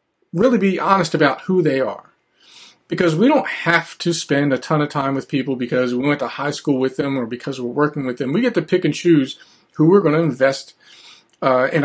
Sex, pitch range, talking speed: male, 140-165 Hz, 230 wpm